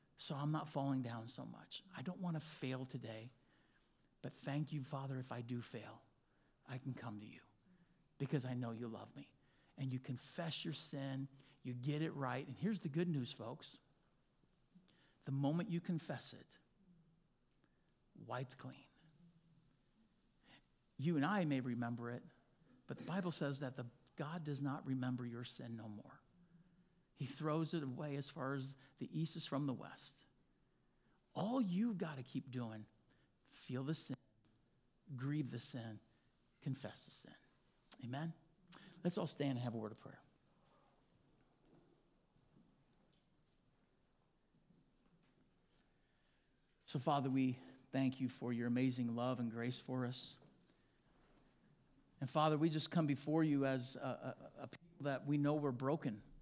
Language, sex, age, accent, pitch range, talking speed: English, male, 50-69, American, 125-160 Hz, 150 wpm